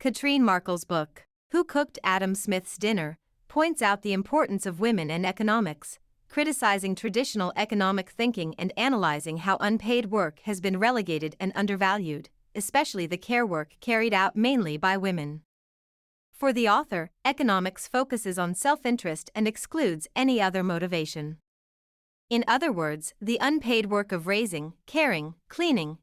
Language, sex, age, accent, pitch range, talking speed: English, female, 30-49, American, 180-235 Hz, 140 wpm